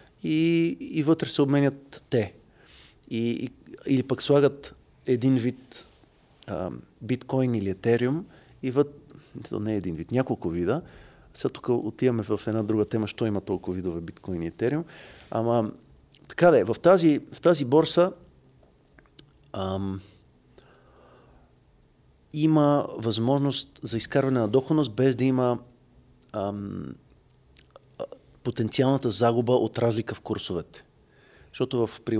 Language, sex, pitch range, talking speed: Bulgarian, male, 110-145 Hz, 115 wpm